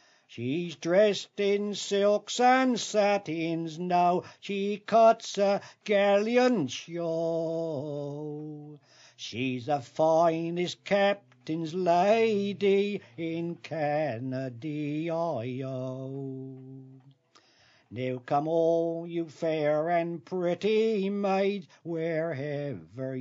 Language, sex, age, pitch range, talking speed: English, male, 60-79, 145-195 Hz, 80 wpm